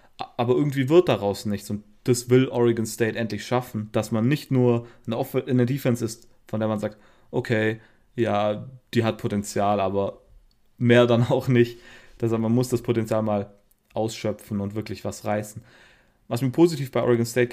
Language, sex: German, male